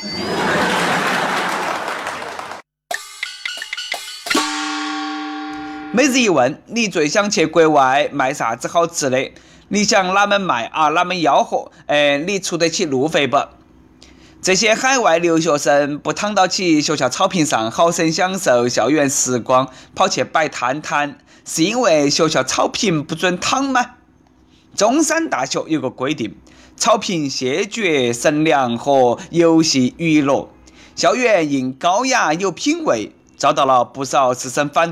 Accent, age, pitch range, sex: native, 20-39, 145-220 Hz, male